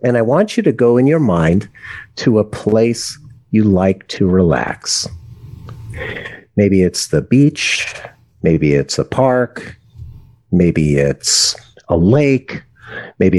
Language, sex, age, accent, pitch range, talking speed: English, male, 50-69, American, 95-125 Hz, 130 wpm